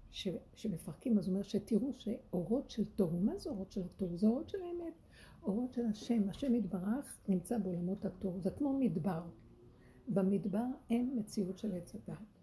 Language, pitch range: Hebrew, 185-240 Hz